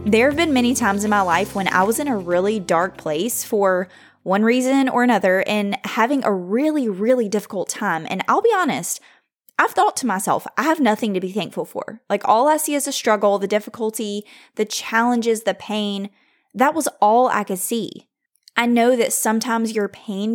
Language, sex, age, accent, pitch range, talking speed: English, female, 20-39, American, 195-240 Hz, 200 wpm